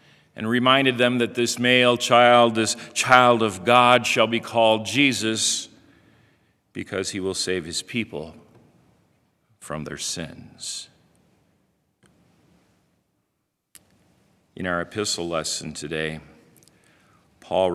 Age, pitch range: 50-69, 105-135 Hz